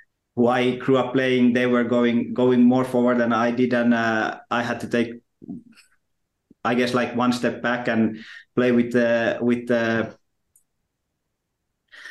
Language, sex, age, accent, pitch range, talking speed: English, male, 20-39, Finnish, 110-120 Hz, 165 wpm